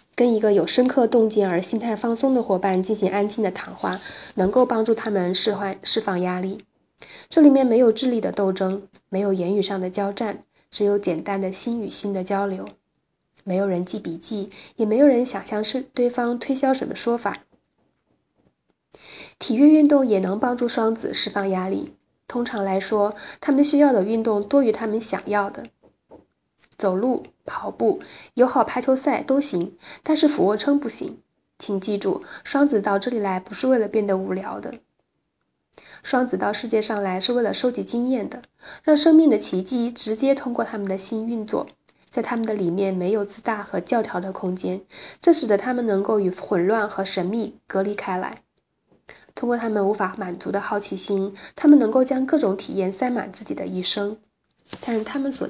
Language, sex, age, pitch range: Chinese, female, 20-39, 195-245 Hz